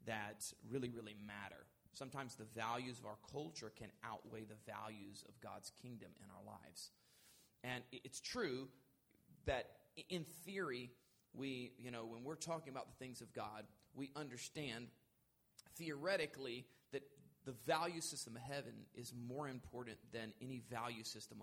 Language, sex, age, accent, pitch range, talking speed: English, male, 30-49, American, 115-145 Hz, 150 wpm